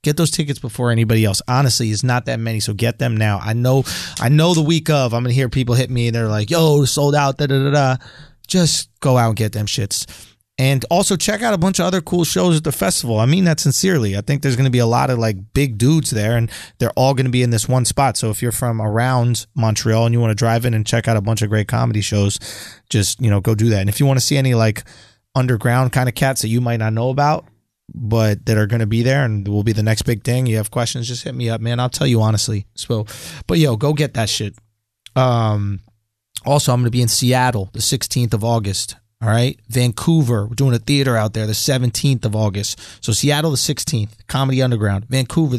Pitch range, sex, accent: 110-135 Hz, male, American